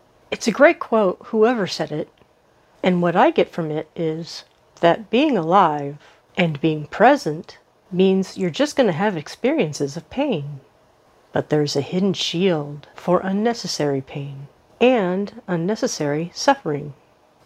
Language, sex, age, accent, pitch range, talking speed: English, female, 40-59, American, 155-210 Hz, 140 wpm